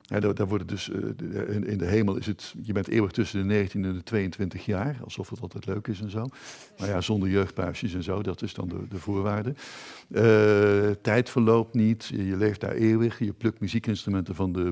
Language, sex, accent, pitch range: Dutch, male, Dutch, 100-120 Hz